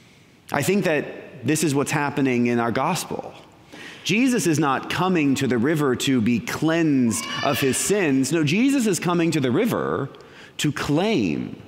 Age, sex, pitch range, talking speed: 30-49, male, 120-165 Hz, 165 wpm